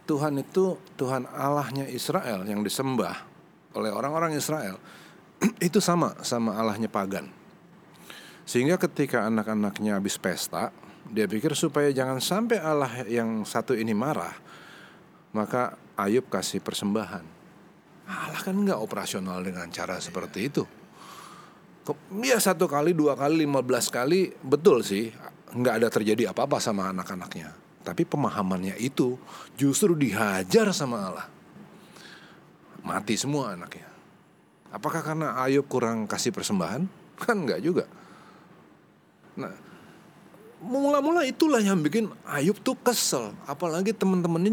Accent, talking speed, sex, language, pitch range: native, 115 wpm, male, Indonesian, 130-200 Hz